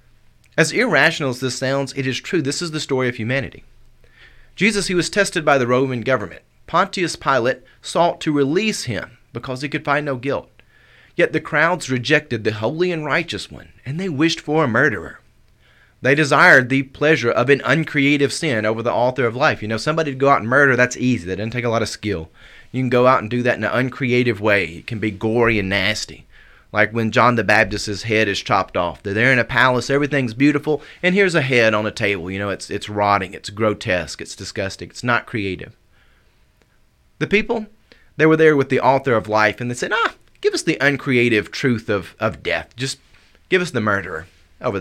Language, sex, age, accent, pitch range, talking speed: English, male, 30-49, American, 110-145 Hz, 215 wpm